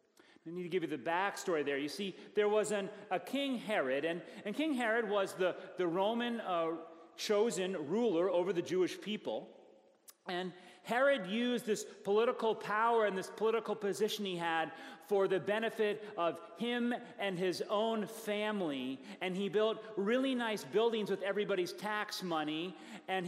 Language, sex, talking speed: English, male, 160 wpm